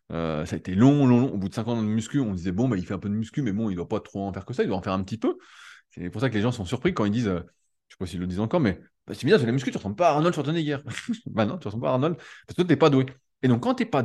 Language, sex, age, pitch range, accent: French, male, 20-39, 100-135 Hz, French